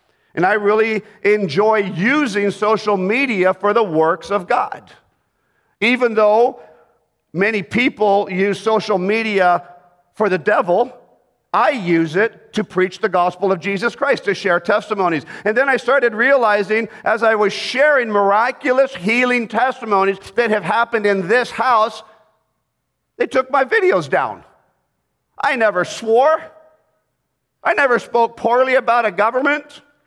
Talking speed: 135 wpm